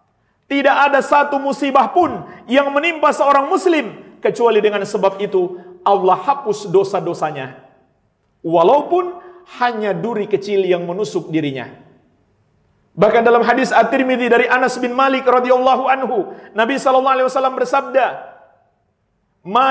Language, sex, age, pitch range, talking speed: Indonesian, male, 50-69, 215-280 Hz, 115 wpm